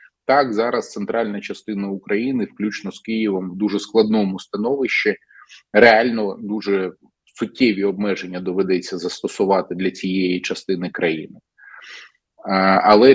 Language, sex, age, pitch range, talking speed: Ukrainian, male, 20-39, 95-110 Hz, 105 wpm